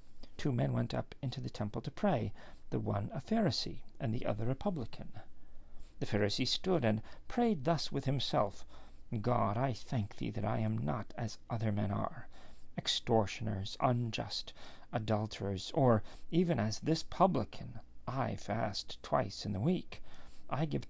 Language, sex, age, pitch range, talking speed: English, male, 40-59, 105-140 Hz, 155 wpm